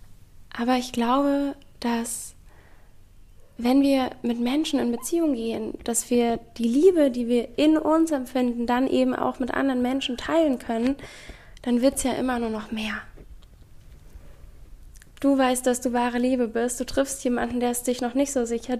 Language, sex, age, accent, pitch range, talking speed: German, female, 10-29, German, 225-255 Hz, 170 wpm